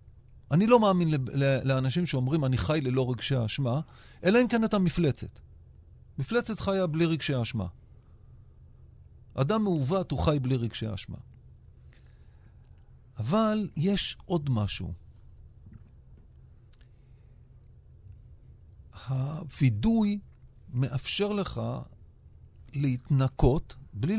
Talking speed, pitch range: 90 wpm, 110-160 Hz